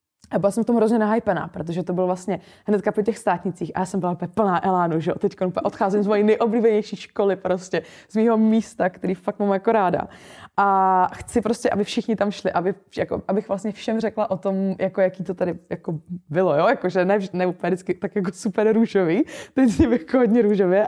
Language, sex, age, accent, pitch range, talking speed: Czech, female, 20-39, native, 180-220 Hz, 220 wpm